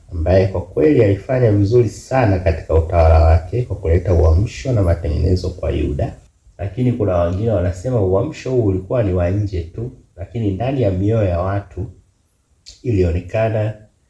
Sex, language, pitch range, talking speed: male, Swahili, 85-105 Hz, 145 wpm